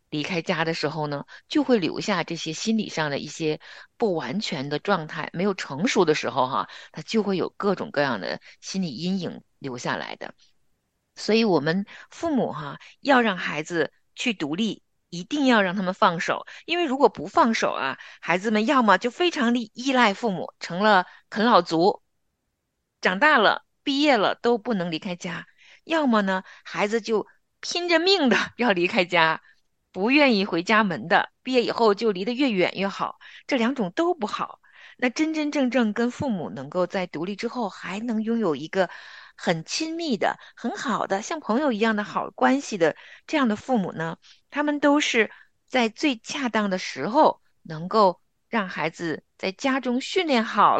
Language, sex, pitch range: Chinese, female, 185-255 Hz